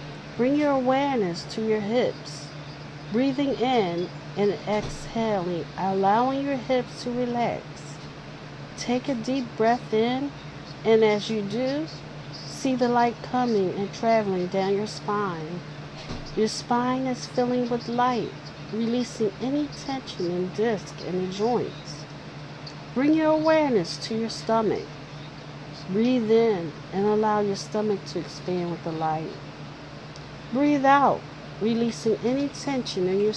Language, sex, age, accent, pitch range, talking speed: English, female, 50-69, American, 185-240 Hz, 135 wpm